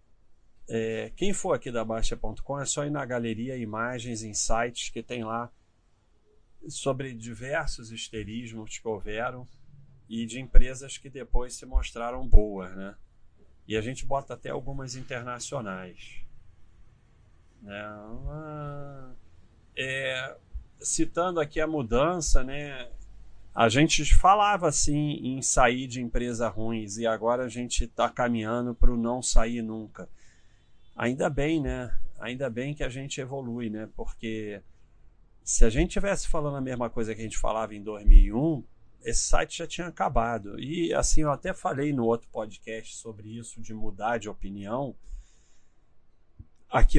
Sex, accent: male, Brazilian